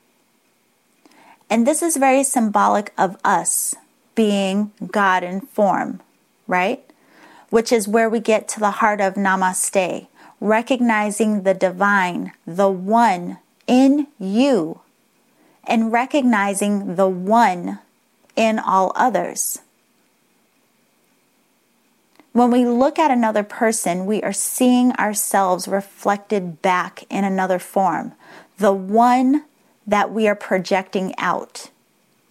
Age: 30-49